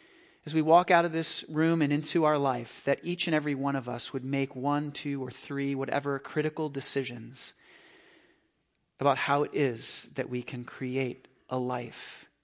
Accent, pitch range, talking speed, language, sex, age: American, 140-200 Hz, 180 wpm, English, male, 40-59